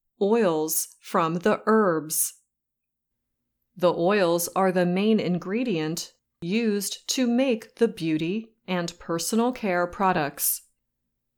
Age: 30-49